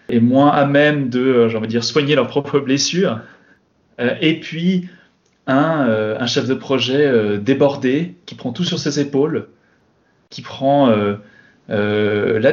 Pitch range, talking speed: 125-160 Hz, 165 wpm